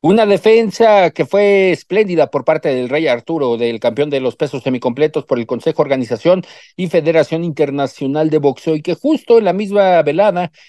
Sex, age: male, 50-69